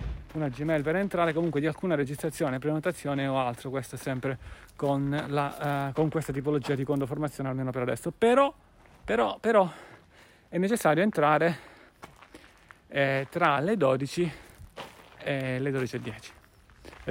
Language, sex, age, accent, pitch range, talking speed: Italian, male, 30-49, native, 130-155 Hz, 125 wpm